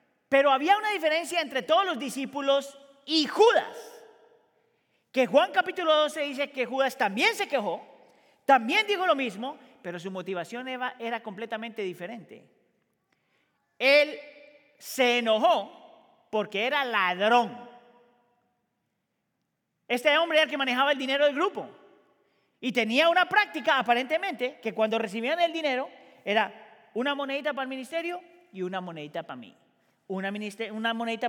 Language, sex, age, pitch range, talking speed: Spanish, male, 40-59, 190-285 Hz, 140 wpm